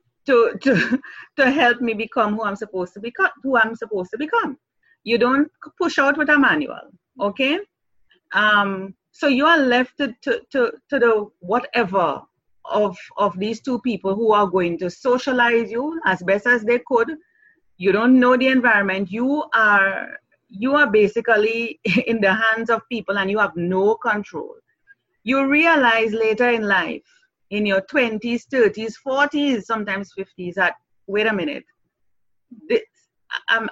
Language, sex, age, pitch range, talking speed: English, female, 30-49, 200-270 Hz, 160 wpm